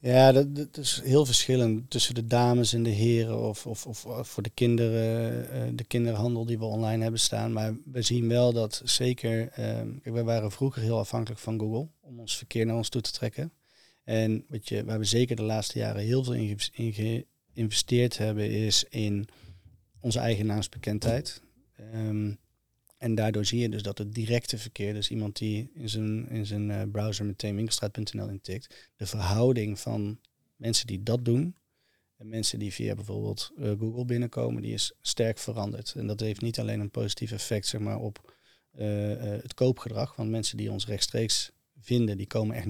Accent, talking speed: Dutch, 180 wpm